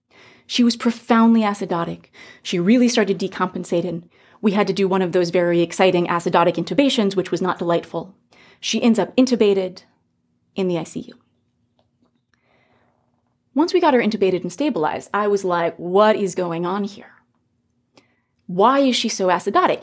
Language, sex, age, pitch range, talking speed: English, female, 30-49, 165-240 Hz, 150 wpm